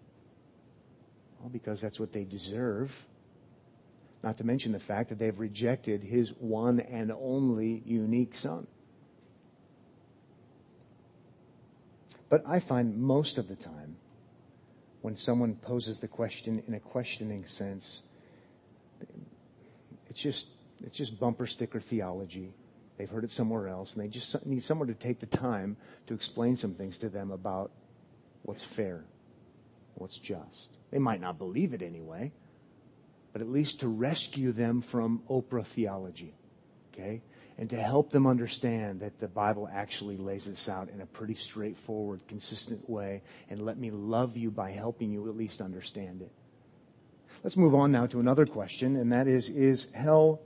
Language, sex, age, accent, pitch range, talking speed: English, male, 50-69, American, 105-125 Hz, 150 wpm